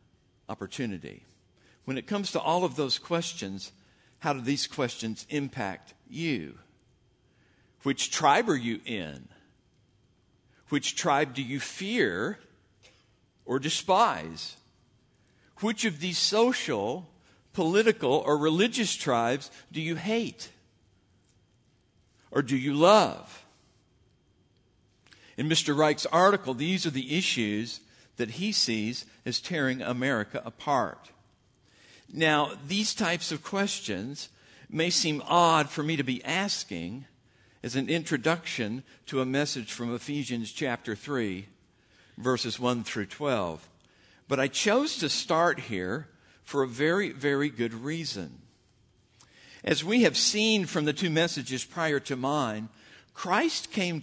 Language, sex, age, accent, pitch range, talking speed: English, male, 60-79, American, 115-165 Hz, 120 wpm